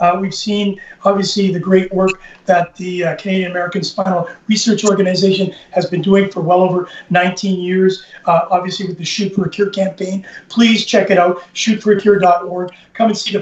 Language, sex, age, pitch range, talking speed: English, male, 40-59, 180-200 Hz, 185 wpm